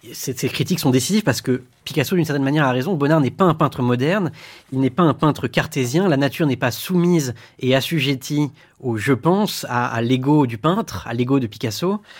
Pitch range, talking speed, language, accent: 125-160 Hz, 215 wpm, French, French